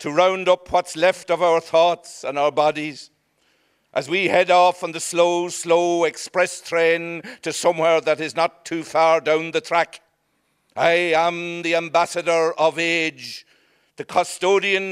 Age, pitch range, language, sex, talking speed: 60-79, 170-200 Hz, English, male, 155 wpm